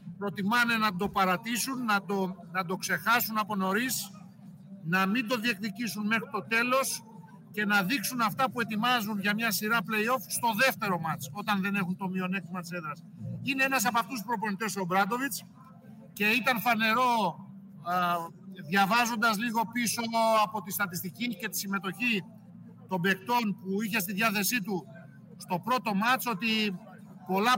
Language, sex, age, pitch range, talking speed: Greek, male, 50-69, 190-230 Hz, 150 wpm